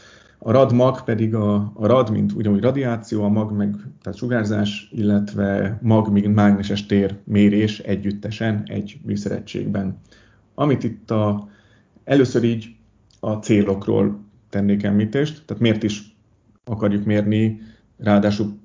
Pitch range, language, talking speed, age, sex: 105-115 Hz, Hungarian, 120 wpm, 30-49, male